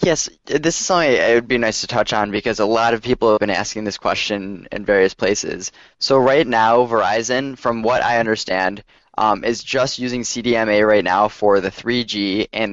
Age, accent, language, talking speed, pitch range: 10-29, American, English, 205 wpm, 100-115 Hz